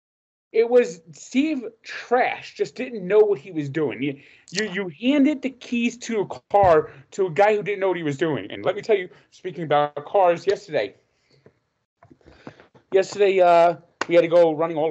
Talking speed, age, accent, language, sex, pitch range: 190 wpm, 30-49, American, English, male, 140-175 Hz